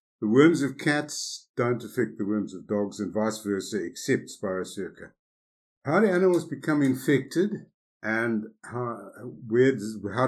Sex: male